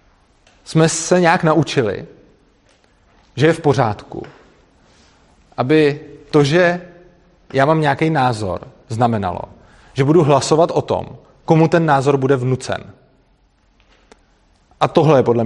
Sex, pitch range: male, 115-150 Hz